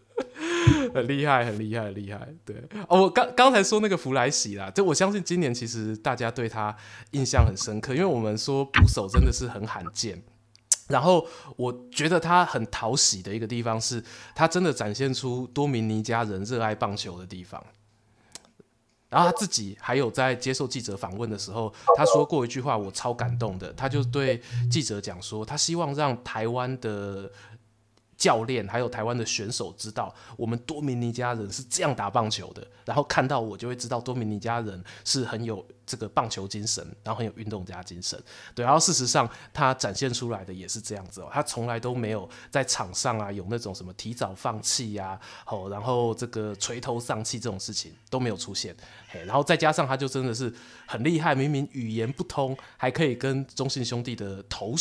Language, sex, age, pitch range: Chinese, male, 20-39, 105-135 Hz